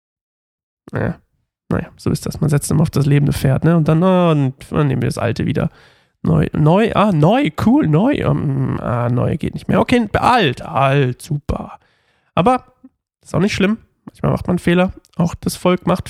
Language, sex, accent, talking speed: German, male, German, 195 wpm